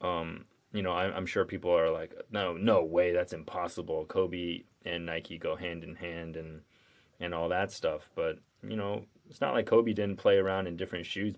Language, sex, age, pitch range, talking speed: English, male, 20-39, 85-115 Hz, 200 wpm